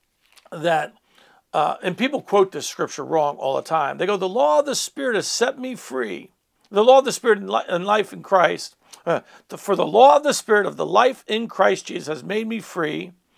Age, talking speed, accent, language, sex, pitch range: 60-79, 215 wpm, American, English, male, 180-235 Hz